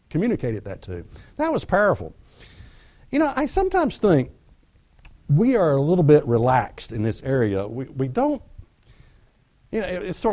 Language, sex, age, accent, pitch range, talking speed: English, male, 60-79, American, 110-160 Hz, 165 wpm